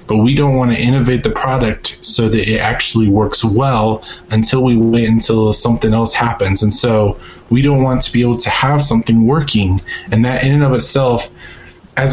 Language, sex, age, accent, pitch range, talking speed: English, male, 20-39, American, 110-125 Hz, 200 wpm